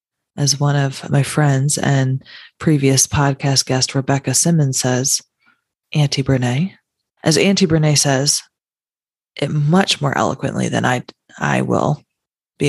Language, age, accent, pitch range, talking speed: English, 20-39, American, 140-175 Hz, 130 wpm